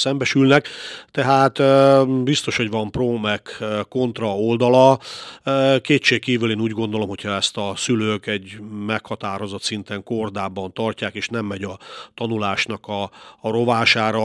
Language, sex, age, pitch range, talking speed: Hungarian, male, 40-59, 100-115 Hz, 125 wpm